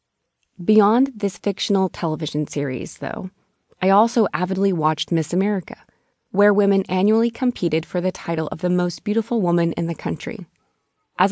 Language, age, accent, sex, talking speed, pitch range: English, 20-39, American, female, 150 wpm, 160-195 Hz